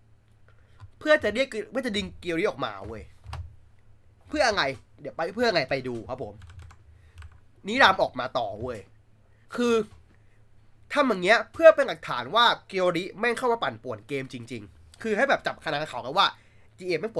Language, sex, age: Thai, male, 20-39